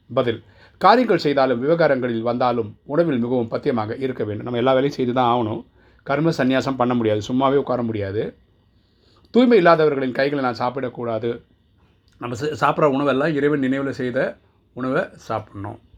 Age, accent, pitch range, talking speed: 30-49, native, 110-135 Hz, 135 wpm